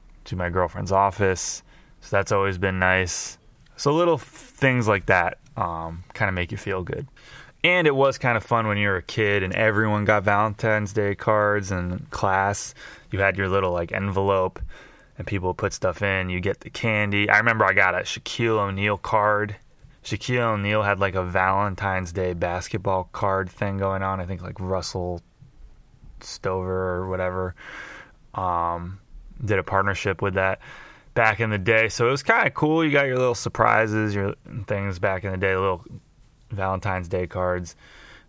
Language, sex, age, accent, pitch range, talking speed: English, male, 20-39, American, 95-110 Hz, 180 wpm